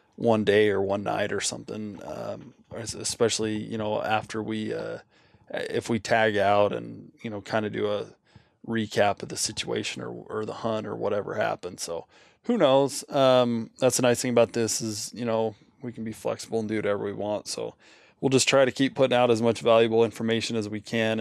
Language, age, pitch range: English, 20-39, 110-130 Hz